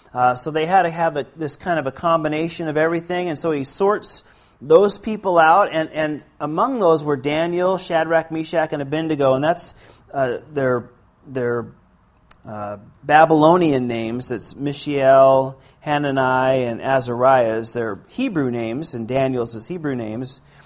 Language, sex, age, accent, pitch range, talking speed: Finnish, male, 40-59, American, 135-165 Hz, 150 wpm